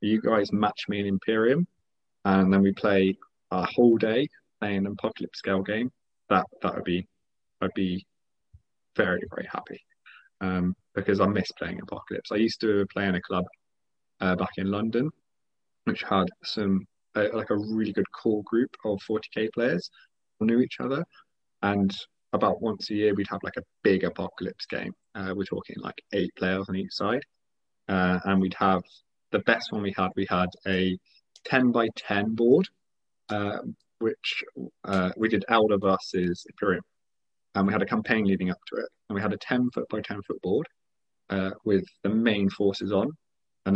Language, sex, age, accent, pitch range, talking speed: English, male, 20-39, British, 95-110 Hz, 180 wpm